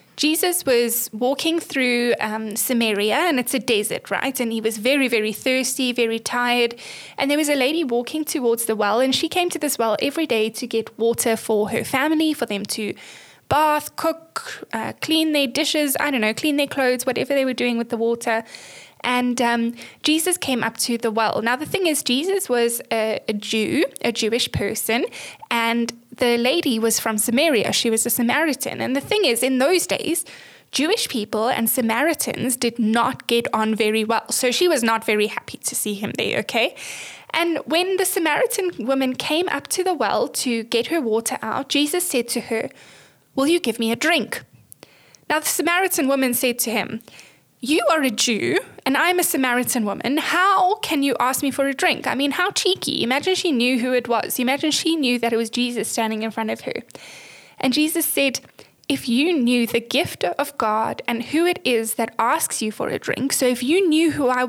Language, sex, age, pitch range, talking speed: English, female, 10-29, 230-310 Hz, 205 wpm